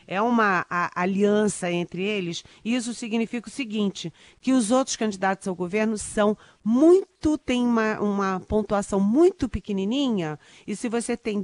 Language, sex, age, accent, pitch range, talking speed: Portuguese, female, 40-59, Brazilian, 175-225 Hz, 155 wpm